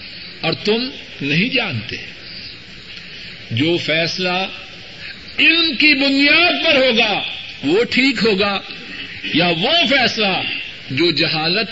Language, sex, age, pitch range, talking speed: Urdu, male, 50-69, 135-170 Hz, 95 wpm